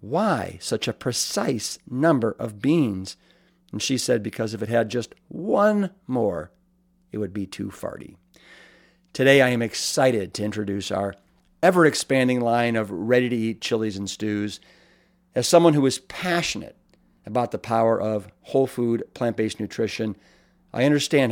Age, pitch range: 50-69, 105-135 Hz